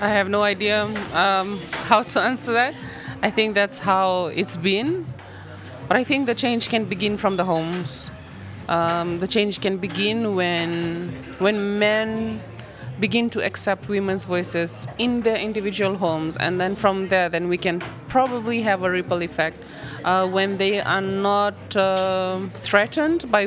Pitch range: 175-215 Hz